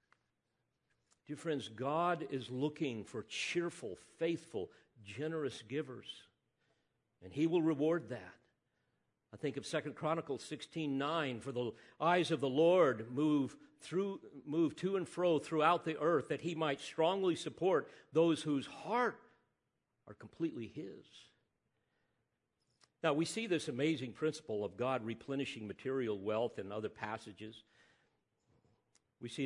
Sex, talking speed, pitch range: male, 130 wpm, 115-160 Hz